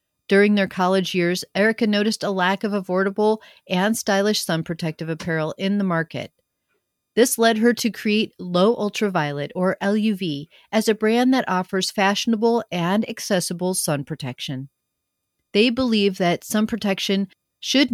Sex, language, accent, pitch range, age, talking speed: female, English, American, 175-225 Hz, 40-59, 145 wpm